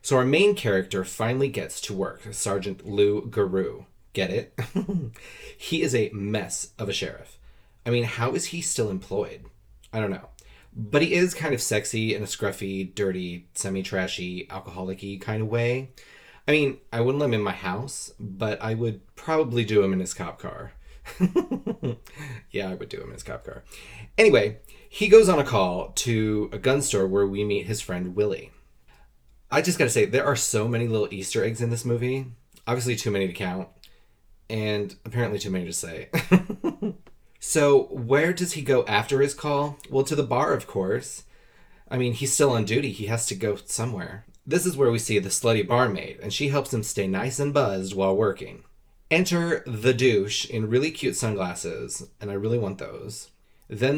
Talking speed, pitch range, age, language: 190 wpm, 100-135 Hz, 30-49, English